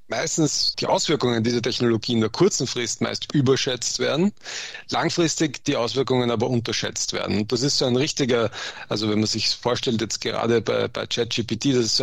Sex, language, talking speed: male, German, 185 wpm